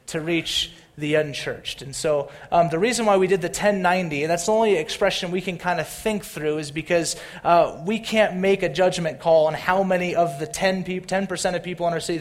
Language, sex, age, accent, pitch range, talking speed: English, male, 30-49, American, 155-185 Hz, 225 wpm